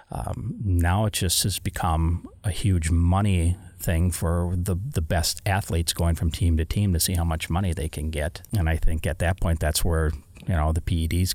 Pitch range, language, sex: 80-95 Hz, English, male